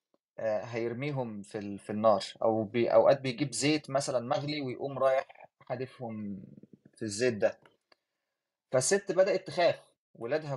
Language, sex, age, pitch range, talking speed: Arabic, male, 20-39, 120-160 Hz, 125 wpm